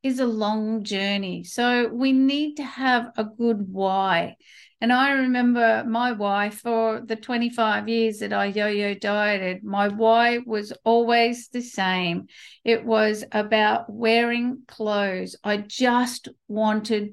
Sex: female